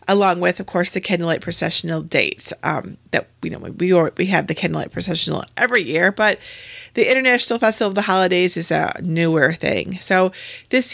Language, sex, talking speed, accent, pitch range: English, female, 195 wpm, American, 175-235 Hz